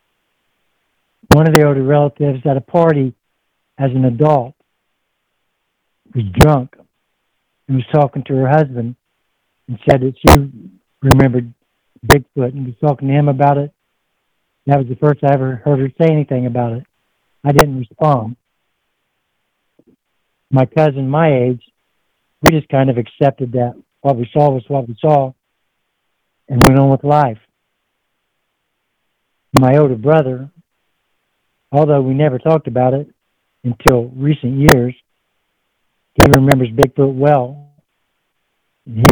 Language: English